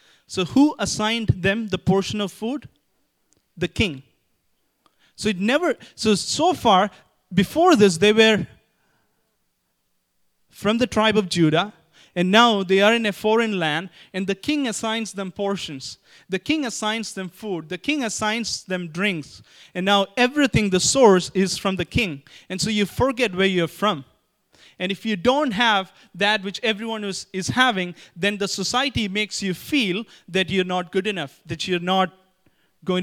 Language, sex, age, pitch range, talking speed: English, male, 30-49, 180-220 Hz, 165 wpm